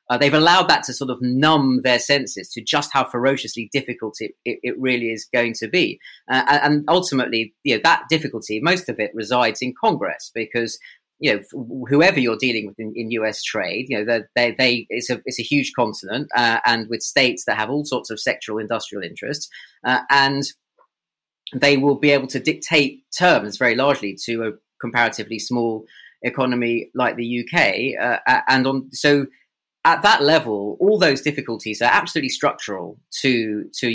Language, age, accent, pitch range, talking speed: English, 30-49, British, 115-145 Hz, 180 wpm